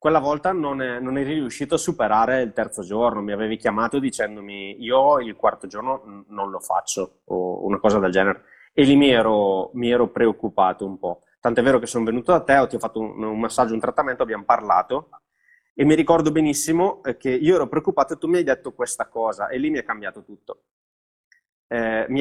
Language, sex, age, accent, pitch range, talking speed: Italian, male, 20-39, native, 110-145 Hz, 205 wpm